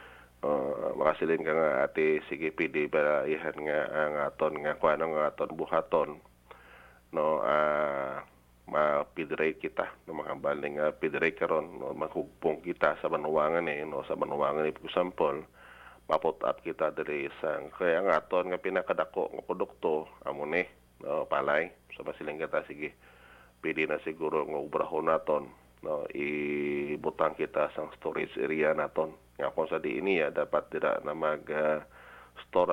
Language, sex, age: Filipino, male, 30-49